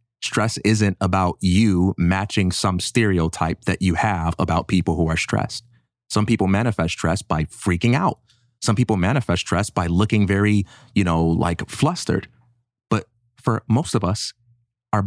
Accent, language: American, English